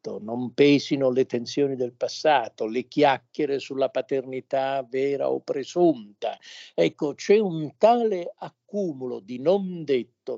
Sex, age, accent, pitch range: male, 50-69, native, 120-165 Hz